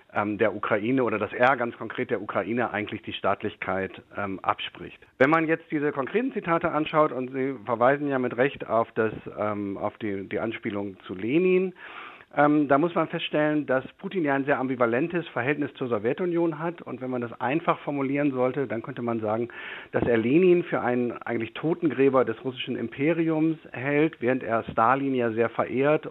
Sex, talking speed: male, 180 wpm